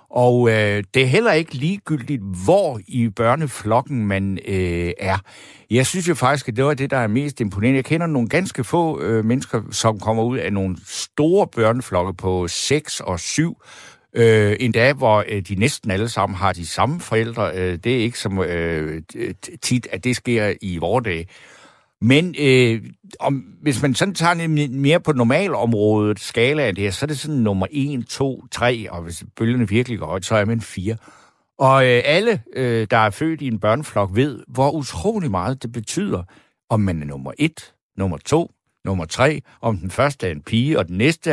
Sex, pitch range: male, 100-135 Hz